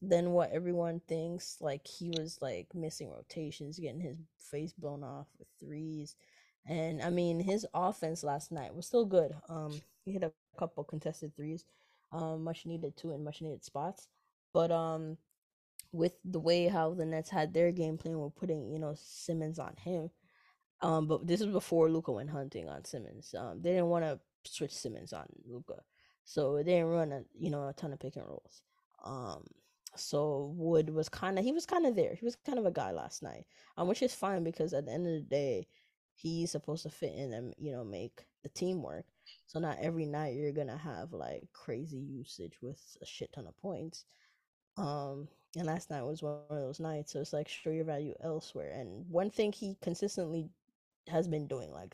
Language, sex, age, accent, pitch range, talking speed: English, female, 20-39, American, 150-170 Hz, 205 wpm